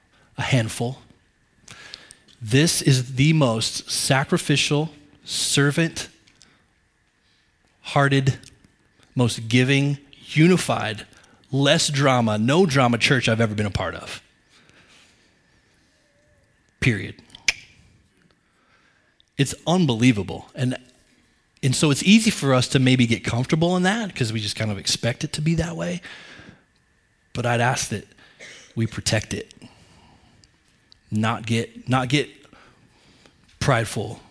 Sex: male